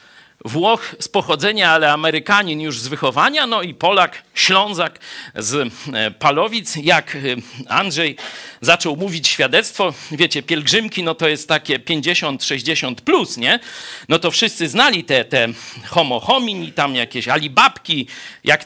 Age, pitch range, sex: 50-69, 130-175 Hz, male